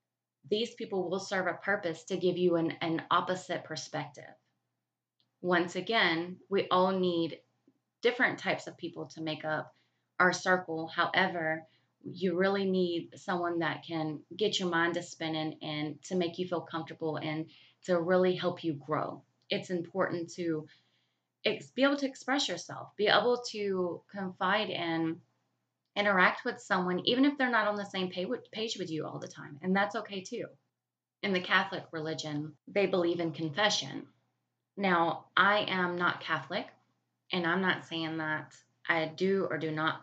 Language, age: English, 20-39